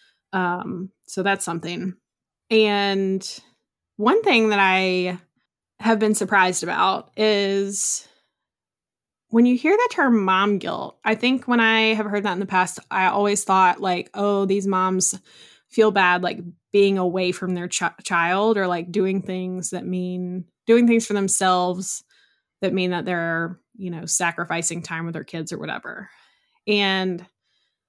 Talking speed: 150 wpm